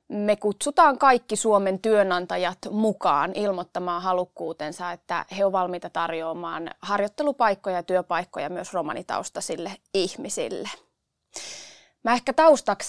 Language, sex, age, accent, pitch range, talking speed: Finnish, female, 20-39, native, 185-240 Hz, 100 wpm